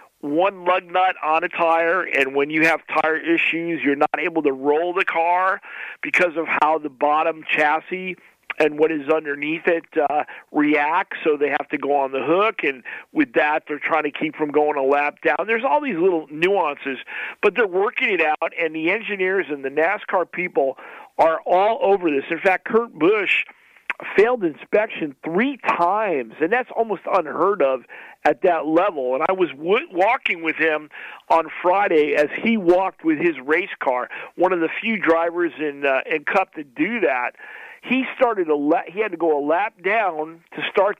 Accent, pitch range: American, 150-195 Hz